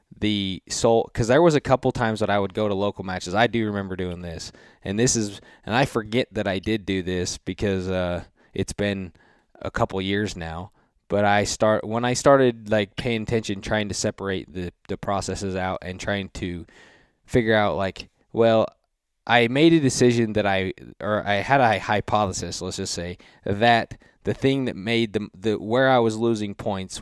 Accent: American